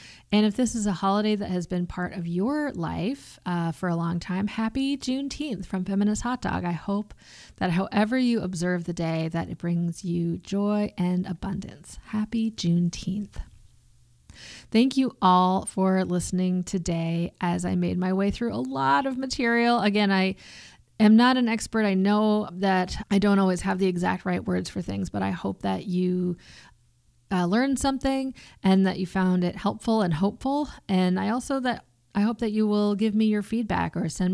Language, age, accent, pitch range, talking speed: English, 30-49, American, 180-220 Hz, 185 wpm